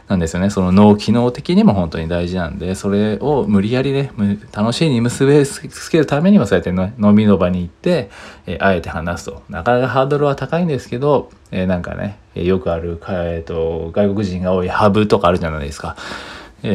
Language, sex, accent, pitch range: Japanese, male, native, 90-120 Hz